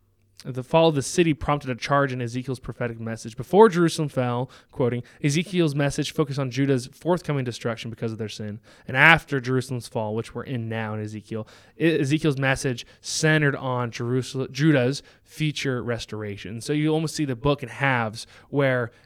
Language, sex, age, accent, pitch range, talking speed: English, male, 20-39, American, 120-155 Hz, 175 wpm